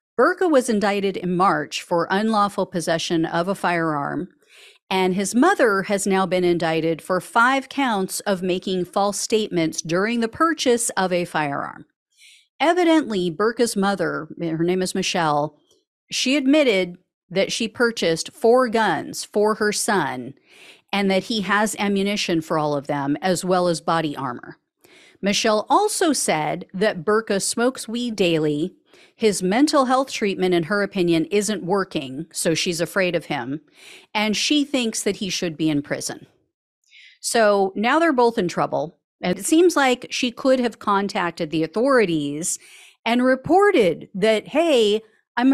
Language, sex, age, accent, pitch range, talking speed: English, female, 50-69, American, 180-255 Hz, 150 wpm